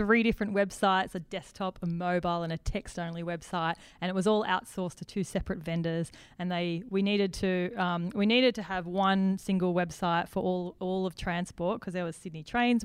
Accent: Australian